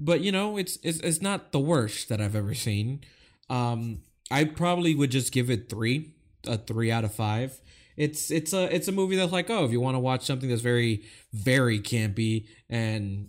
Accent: American